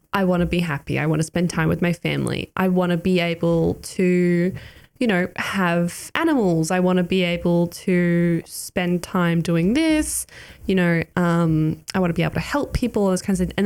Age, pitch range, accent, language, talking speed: 10-29, 170-210 Hz, Australian, English, 210 wpm